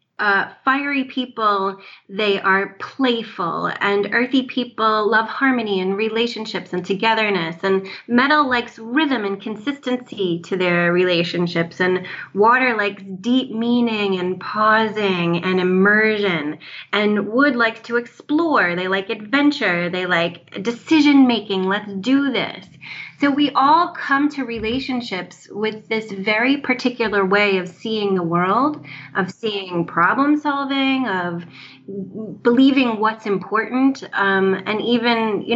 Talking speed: 125 wpm